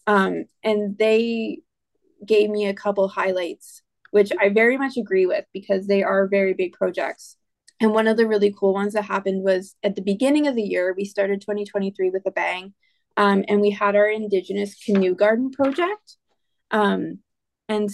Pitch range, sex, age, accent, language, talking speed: 195-215 Hz, female, 20-39, American, English, 175 wpm